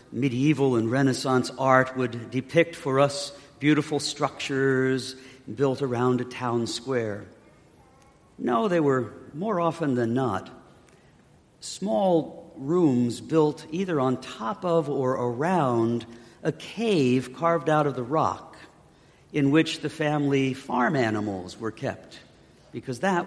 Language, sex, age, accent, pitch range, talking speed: English, male, 50-69, American, 125-160 Hz, 125 wpm